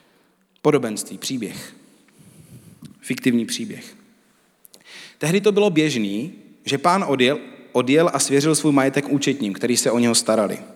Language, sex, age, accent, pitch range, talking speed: Czech, male, 30-49, native, 120-170 Hz, 125 wpm